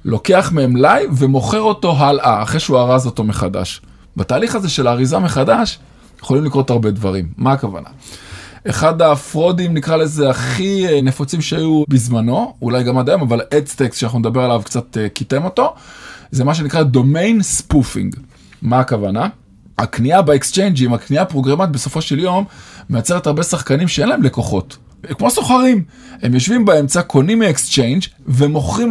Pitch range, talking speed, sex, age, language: 130-180 Hz, 145 wpm, male, 20-39, Hebrew